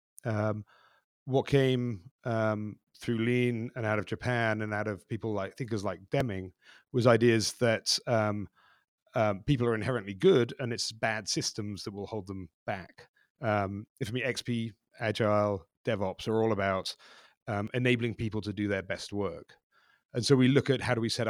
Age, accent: 30-49, British